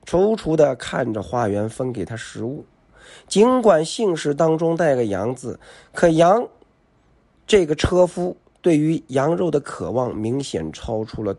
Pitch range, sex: 110-175 Hz, male